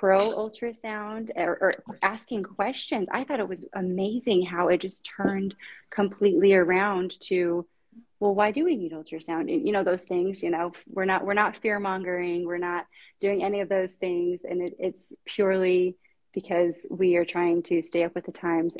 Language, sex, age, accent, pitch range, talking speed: English, female, 30-49, American, 175-200 Hz, 180 wpm